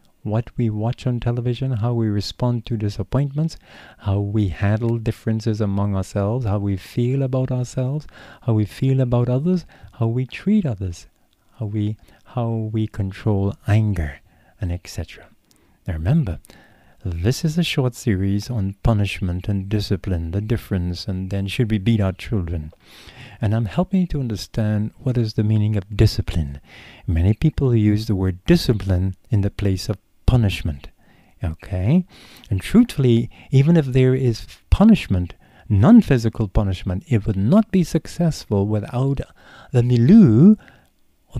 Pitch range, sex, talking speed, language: 95-125 Hz, male, 145 wpm, English